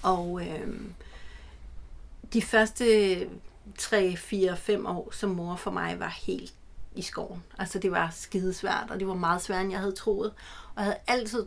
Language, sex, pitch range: Danish, female, 200-235 Hz